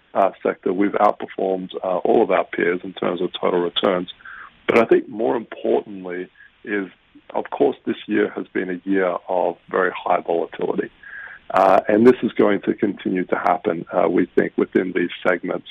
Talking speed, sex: 180 wpm, male